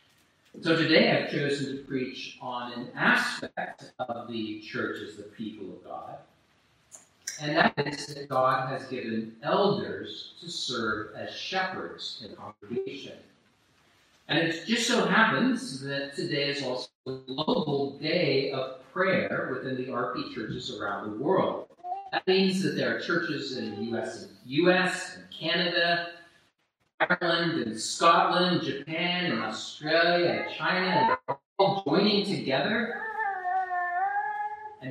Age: 40-59